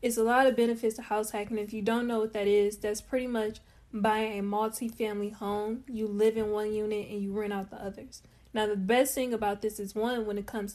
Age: 10-29